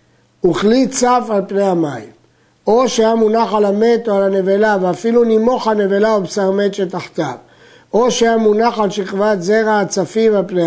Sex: male